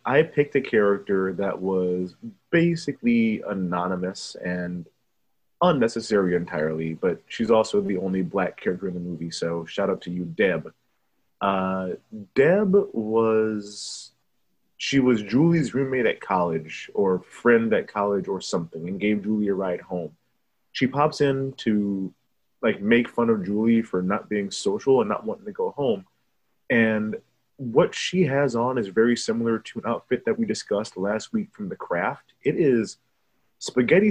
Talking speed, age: 155 wpm, 30-49